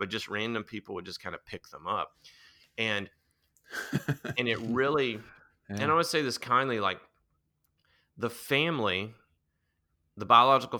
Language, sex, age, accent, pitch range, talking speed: English, male, 30-49, American, 85-110 Hz, 150 wpm